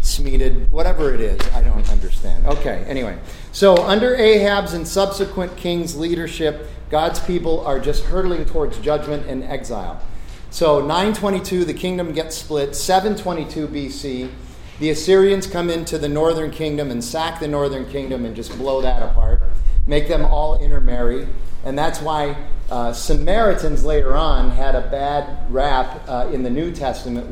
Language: English